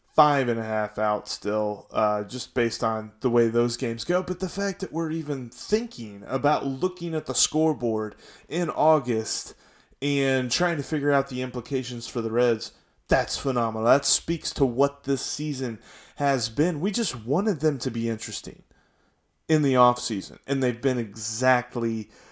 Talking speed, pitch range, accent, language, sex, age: 170 wpm, 120-150 Hz, American, English, male, 20-39